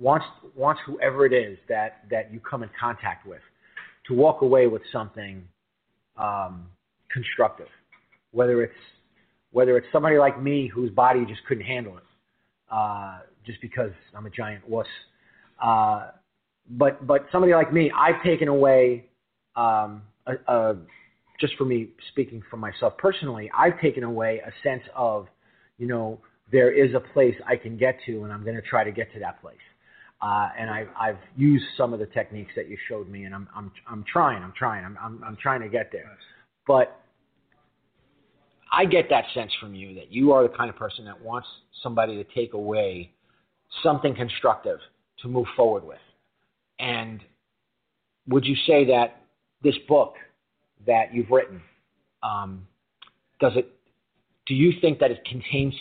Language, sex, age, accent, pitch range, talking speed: English, male, 30-49, American, 110-135 Hz, 165 wpm